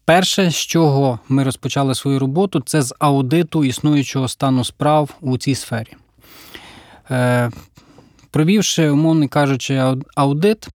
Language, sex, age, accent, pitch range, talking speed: Ukrainian, male, 20-39, native, 125-150 Hz, 115 wpm